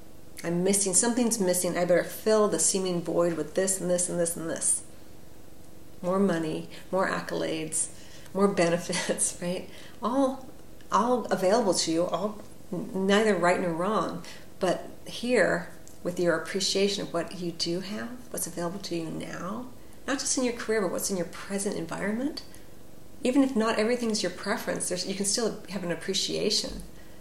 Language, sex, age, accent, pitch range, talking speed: English, female, 40-59, American, 165-205 Hz, 160 wpm